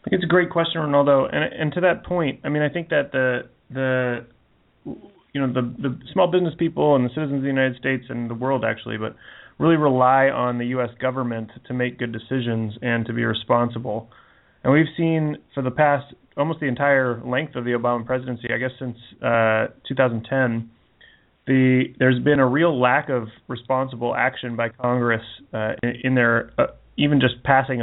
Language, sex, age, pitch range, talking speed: English, male, 30-49, 120-140 Hz, 190 wpm